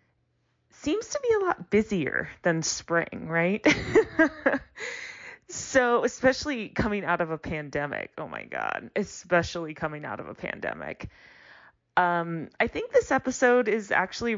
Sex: female